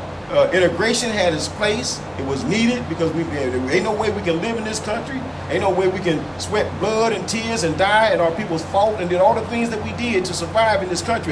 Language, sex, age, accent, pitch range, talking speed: English, male, 40-59, American, 165-215 Hz, 255 wpm